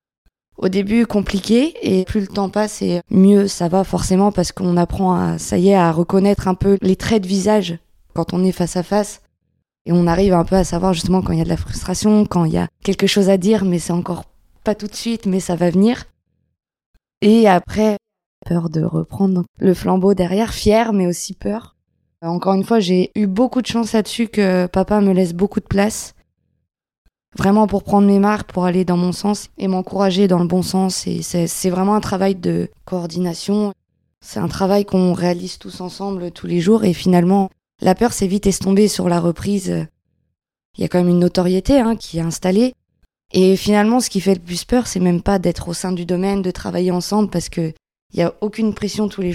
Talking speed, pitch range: 215 wpm, 175-205 Hz